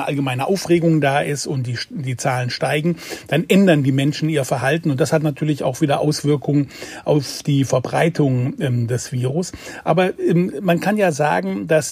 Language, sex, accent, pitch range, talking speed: German, male, German, 135-170 Hz, 175 wpm